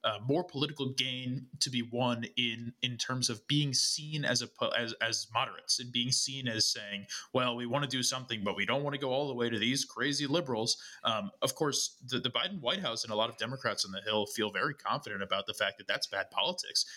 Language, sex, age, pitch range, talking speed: English, male, 20-39, 110-135 Hz, 240 wpm